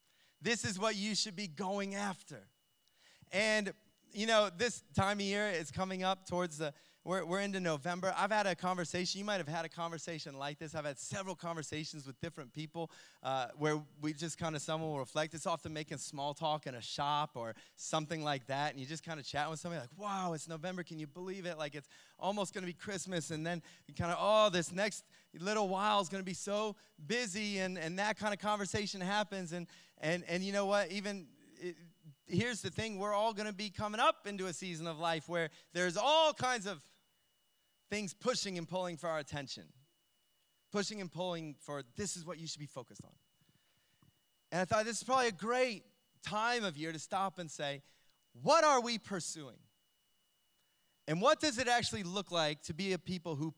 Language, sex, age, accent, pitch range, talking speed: English, male, 20-39, American, 160-205 Hz, 210 wpm